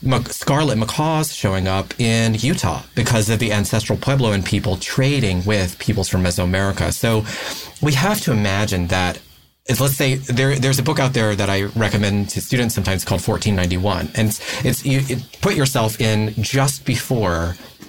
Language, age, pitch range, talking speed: English, 30-49, 95-125 Hz, 165 wpm